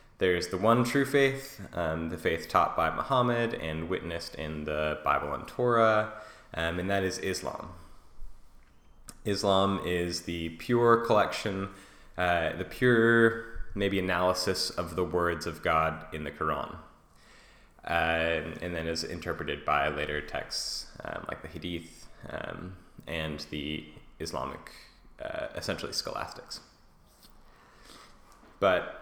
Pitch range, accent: 85-110 Hz, American